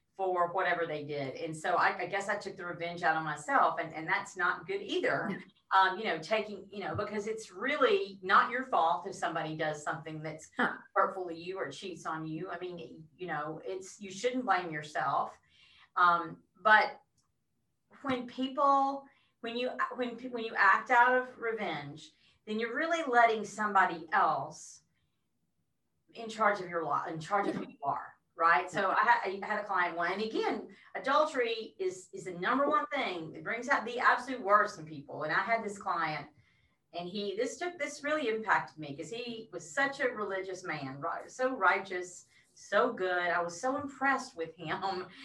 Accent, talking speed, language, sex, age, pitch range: American, 185 wpm, English, female, 40-59, 170-245 Hz